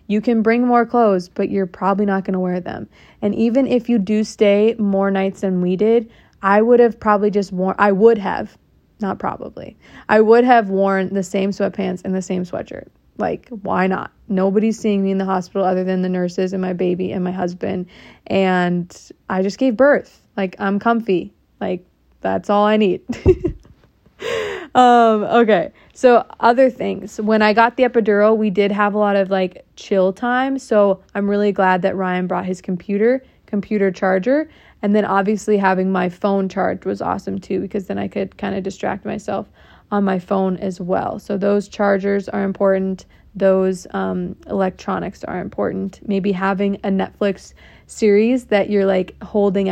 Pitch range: 190-220 Hz